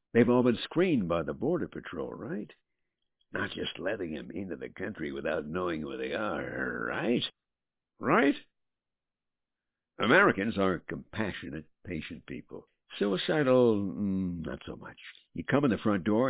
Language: English